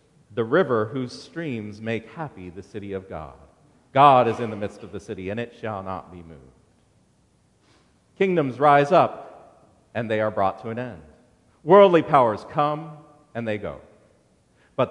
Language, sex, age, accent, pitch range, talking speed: English, male, 40-59, American, 110-150 Hz, 165 wpm